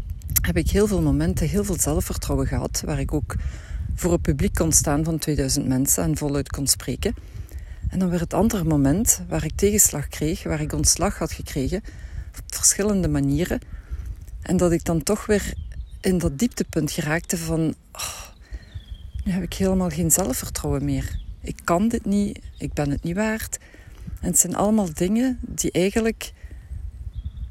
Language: Dutch